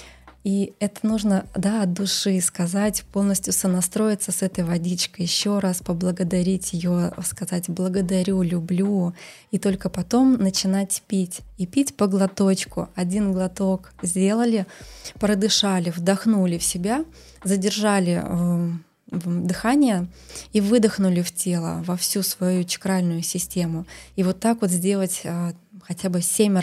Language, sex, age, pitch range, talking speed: Russian, female, 20-39, 180-200 Hz, 125 wpm